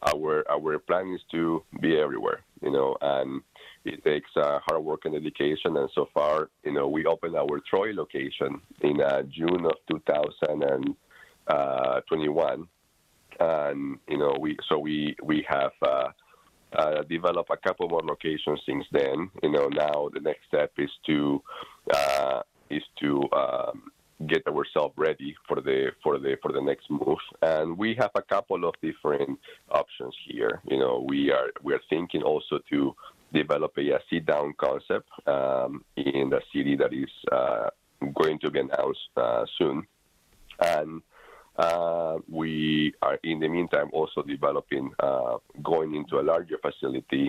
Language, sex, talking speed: English, male, 155 wpm